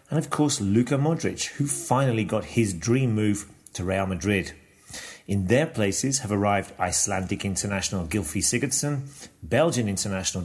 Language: English